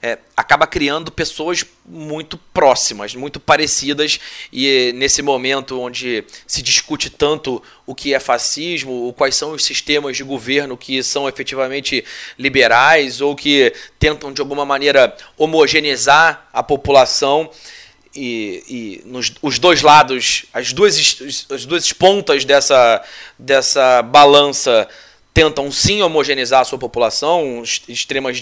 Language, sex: Portuguese, male